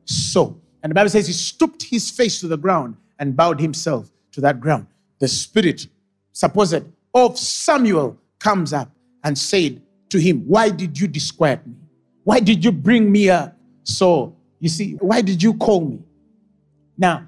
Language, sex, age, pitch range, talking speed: English, male, 50-69, 160-225 Hz, 170 wpm